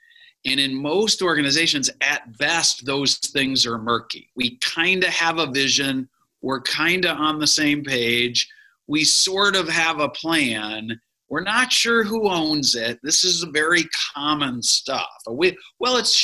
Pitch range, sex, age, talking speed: 130-185 Hz, male, 50-69, 155 wpm